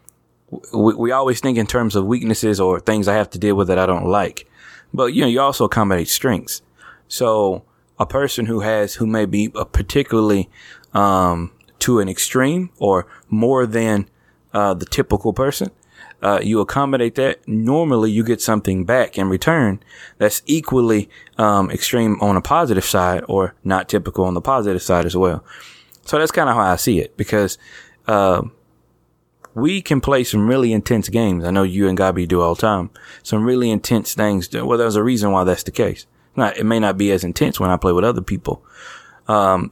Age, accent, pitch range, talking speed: 20-39, American, 95-115 Hz, 195 wpm